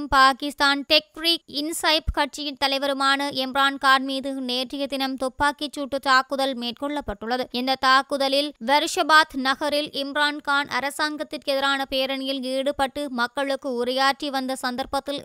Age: 20-39